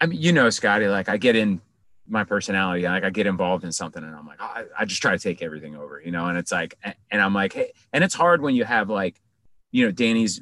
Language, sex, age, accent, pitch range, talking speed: English, male, 30-49, American, 95-120 Hz, 270 wpm